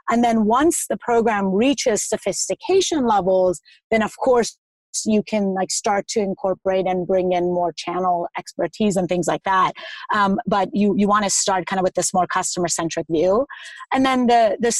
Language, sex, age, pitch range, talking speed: English, female, 30-49, 185-220 Hz, 185 wpm